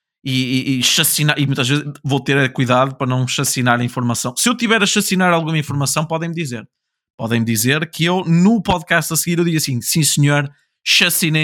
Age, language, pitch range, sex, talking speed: 20-39, Portuguese, 120-150 Hz, male, 200 wpm